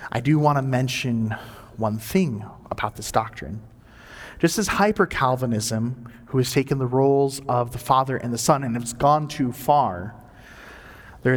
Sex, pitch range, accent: male, 115-150 Hz, American